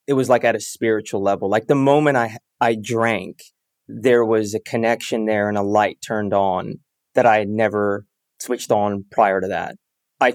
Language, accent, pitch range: English, American, 105-120 Hz